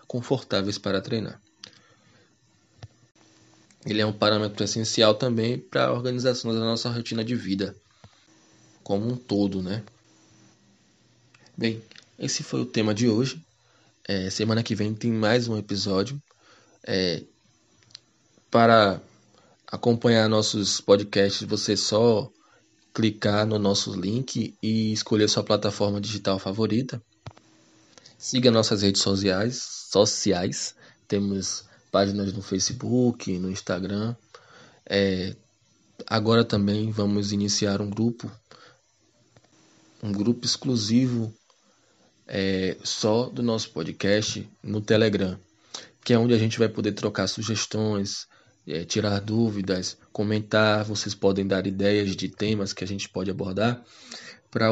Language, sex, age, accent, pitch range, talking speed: Portuguese, male, 20-39, Brazilian, 100-115 Hz, 115 wpm